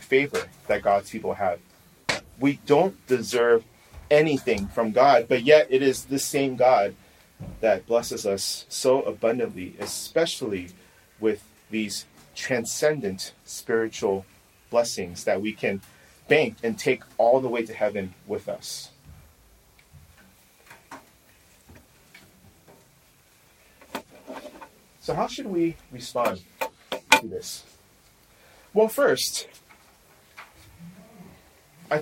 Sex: male